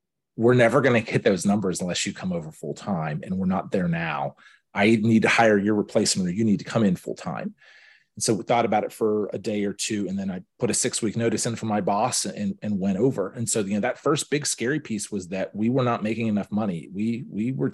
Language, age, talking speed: English, 30-49, 255 wpm